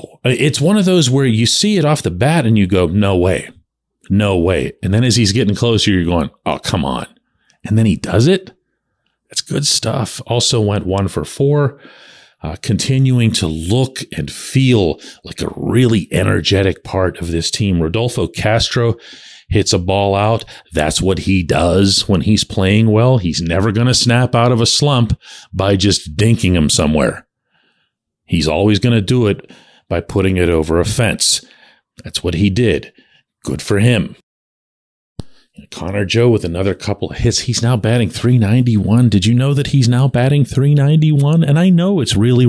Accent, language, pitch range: American, English, 95-130 Hz